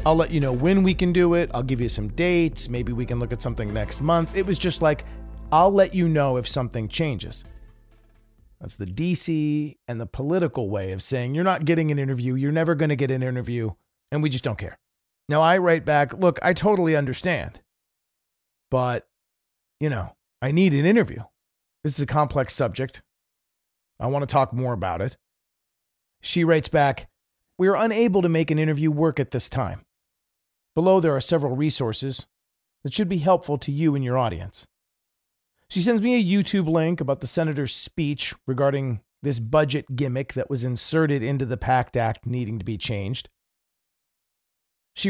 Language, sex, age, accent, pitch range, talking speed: English, male, 40-59, American, 120-170 Hz, 185 wpm